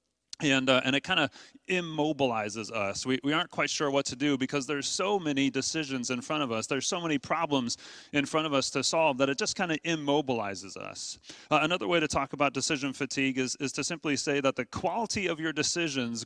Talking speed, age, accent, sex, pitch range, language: 225 wpm, 30-49, American, male, 130-155 Hz, English